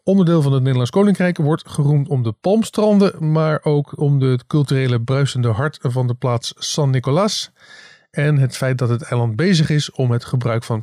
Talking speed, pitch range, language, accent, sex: 190 wpm, 130-175 Hz, Dutch, Dutch, male